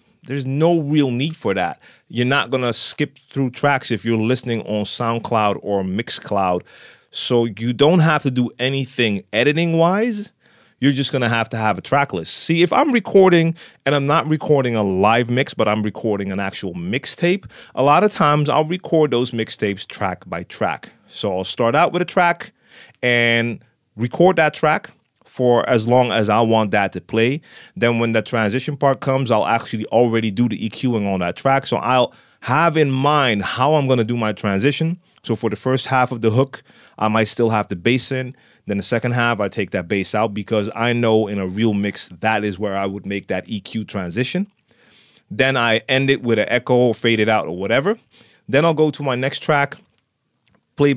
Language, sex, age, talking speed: English, male, 30-49, 200 wpm